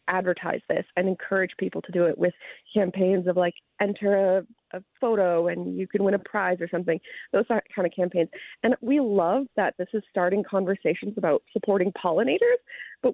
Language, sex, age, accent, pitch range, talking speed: English, female, 30-49, American, 175-225 Hz, 185 wpm